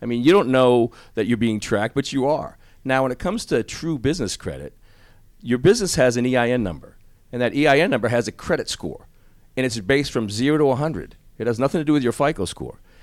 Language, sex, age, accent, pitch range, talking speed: English, male, 40-59, American, 110-135 Hz, 230 wpm